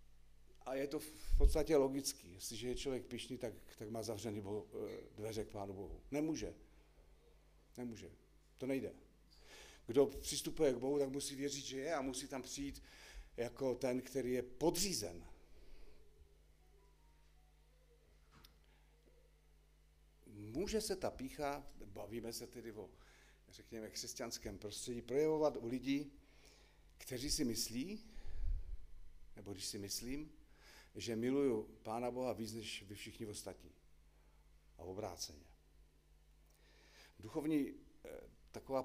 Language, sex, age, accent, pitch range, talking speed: Czech, male, 40-59, native, 100-135 Hz, 115 wpm